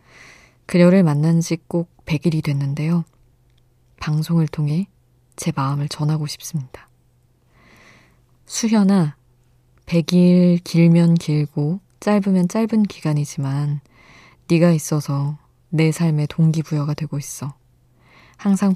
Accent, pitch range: native, 125-170 Hz